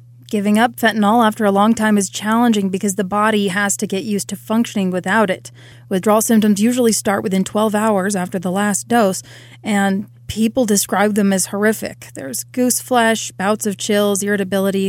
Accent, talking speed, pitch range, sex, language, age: American, 175 wpm, 190-220 Hz, female, English, 30-49